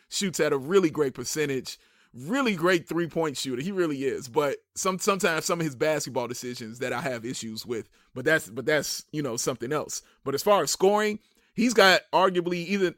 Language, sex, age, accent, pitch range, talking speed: English, male, 30-49, American, 140-190 Hz, 200 wpm